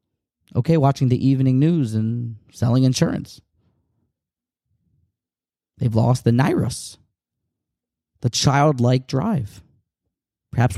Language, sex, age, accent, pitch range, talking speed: English, male, 30-49, American, 110-140 Hz, 90 wpm